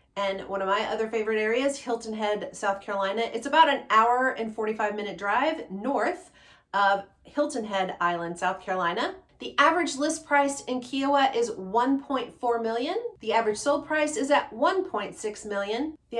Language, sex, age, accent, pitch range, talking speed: English, female, 40-59, American, 200-265 Hz, 165 wpm